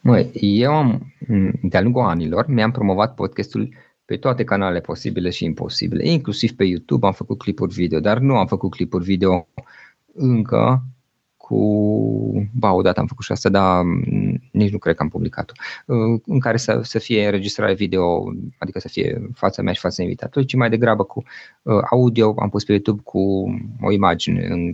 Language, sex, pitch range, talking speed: Romanian, male, 95-125 Hz, 170 wpm